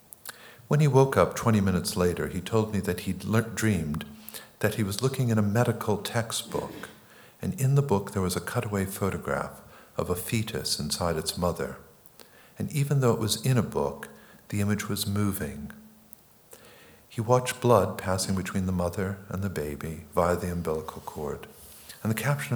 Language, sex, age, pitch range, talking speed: English, male, 50-69, 80-110 Hz, 175 wpm